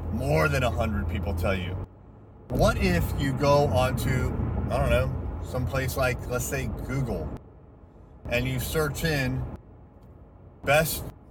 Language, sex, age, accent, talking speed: English, male, 30-49, American, 145 wpm